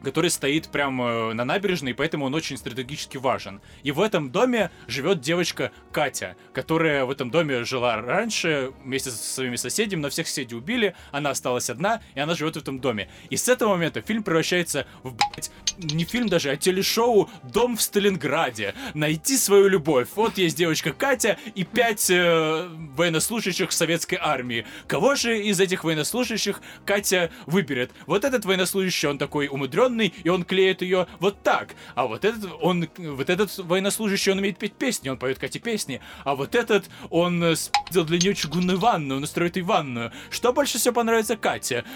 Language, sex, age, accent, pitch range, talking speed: Russian, male, 20-39, native, 145-200 Hz, 175 wpm